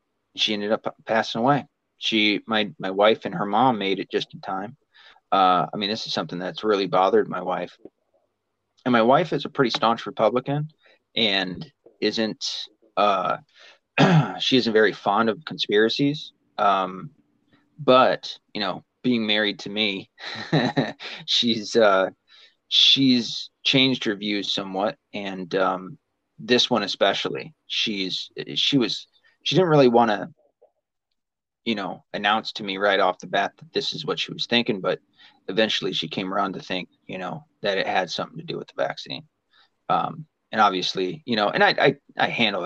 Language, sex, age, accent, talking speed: English, male, 30-49, American, 165 wpm